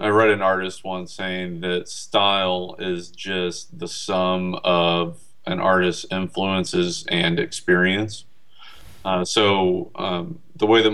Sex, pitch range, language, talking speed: male, 90-110 Hz, English, 130 wpm